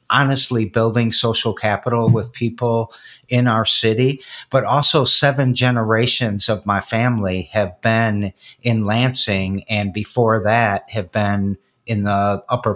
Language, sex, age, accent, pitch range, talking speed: English, male, 50-69, American, 105-125 Hz, 130 wpm